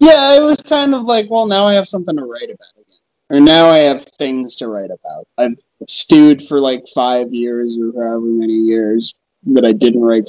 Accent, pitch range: American, 120-170 Hz